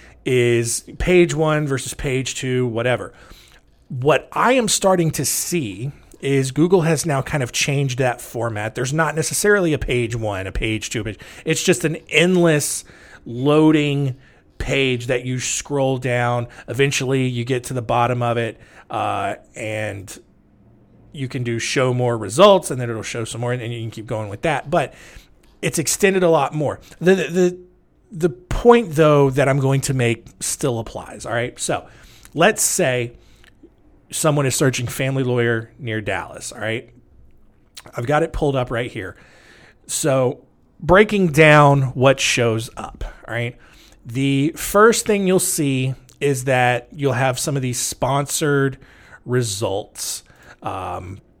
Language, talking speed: English, 155 wpm